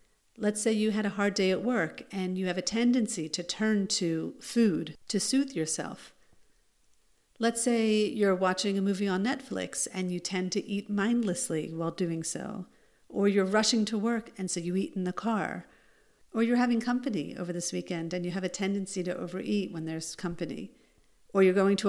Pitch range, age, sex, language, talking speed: 180-230 Hz, 50-69, female, English, 195 wpm